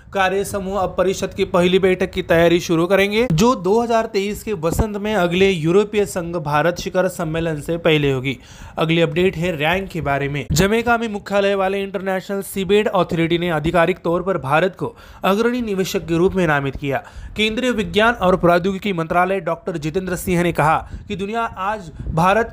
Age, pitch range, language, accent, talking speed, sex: 30-49, 170-205 Hz, Marathi, native, 115 wpm, male